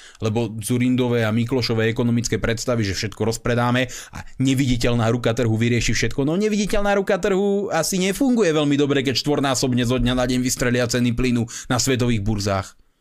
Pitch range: 110-145 Hz